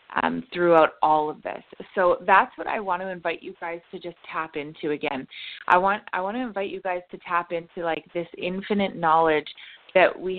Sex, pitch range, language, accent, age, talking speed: female, 165-190 Hz, English, American, 20-39, 210 wpm